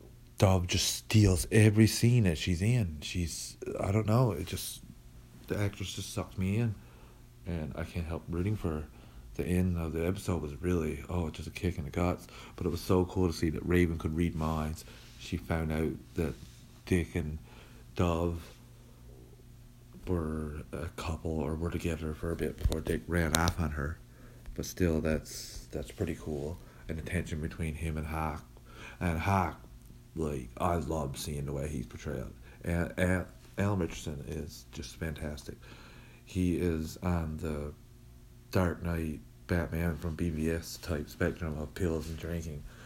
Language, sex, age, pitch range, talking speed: English, male, 40-59, 80-95 Hz, 170 wpm